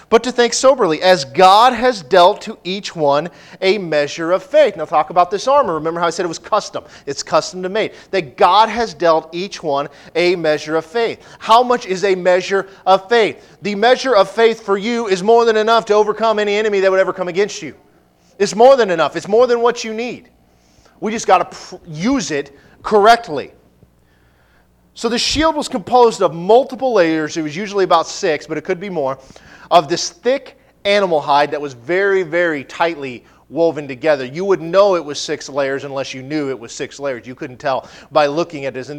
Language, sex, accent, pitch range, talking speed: English, male, American, 150-205 Hz, 210 wpm